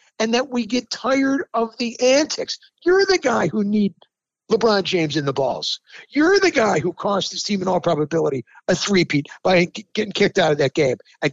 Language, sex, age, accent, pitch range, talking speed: English, male, 50-69, American, 180-245 Hz, 200 wpm